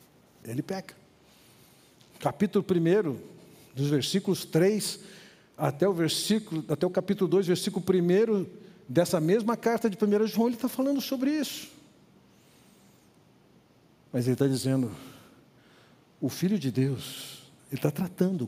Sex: male